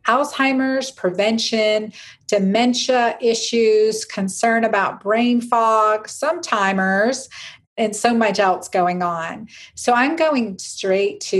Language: English